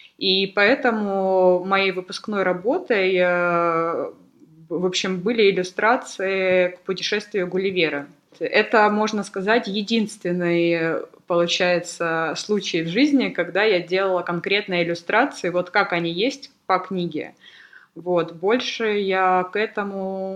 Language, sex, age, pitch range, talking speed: Russian, female, 20-39, 180-210 Hz, 105 wpm